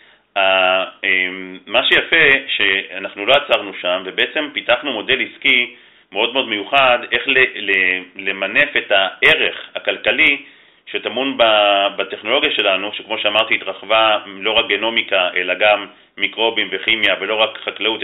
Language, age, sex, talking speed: Hebrew, 40-59, male, 115 wpm